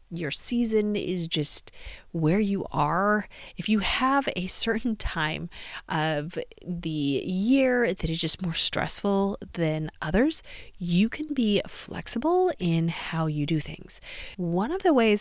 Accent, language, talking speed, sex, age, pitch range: American, English, 140 wpm, female, 30-49, 165-230 Hz